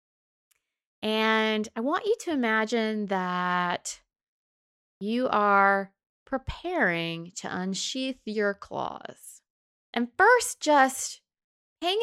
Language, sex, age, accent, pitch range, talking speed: English, female, 20-39, American, 190-245 Hz, 90 wpm